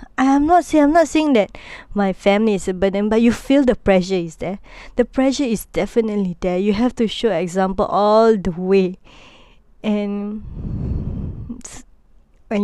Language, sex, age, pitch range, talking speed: Malay, female, 20-39, 195-230 Hz, 165 wpm